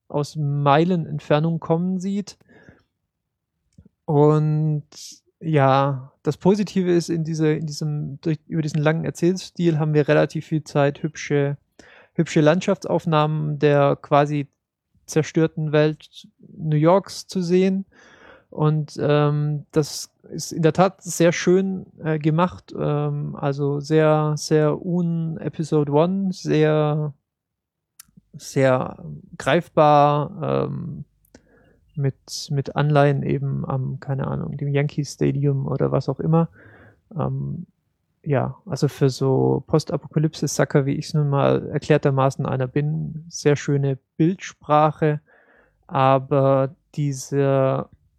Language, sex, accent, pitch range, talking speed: German, male, German, 145-165 Hz, 110 wpm